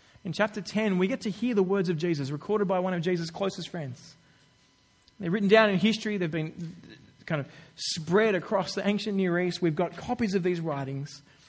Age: 20-39